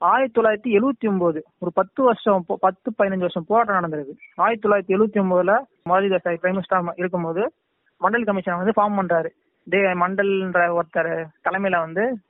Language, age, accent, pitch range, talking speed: Tamil, 30-49, native, 180-215 Hz, 145 wpm